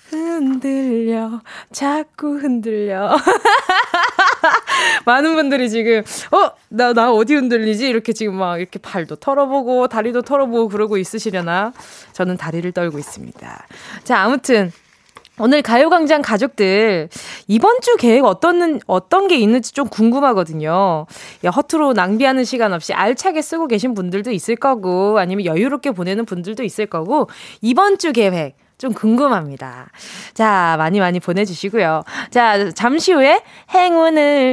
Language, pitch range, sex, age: Korean, 205-305 Hz, female, 20-39